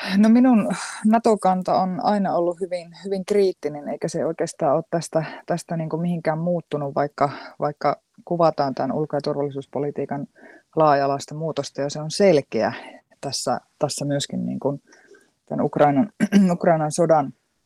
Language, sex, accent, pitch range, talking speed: Finnish, female, native, 145-180 Hz, 135 wpm